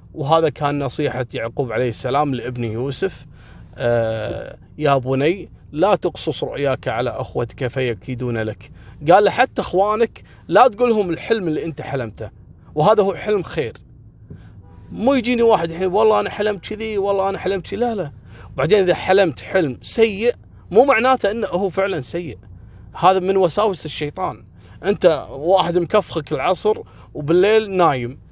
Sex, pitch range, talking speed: male, 125-210 Hz, 145 wpm